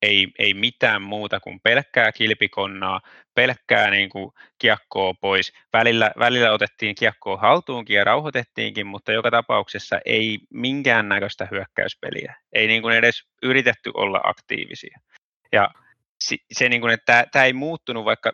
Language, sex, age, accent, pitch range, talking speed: Finnish, male, 20-39, native, 105-125 Hz, 135 wpm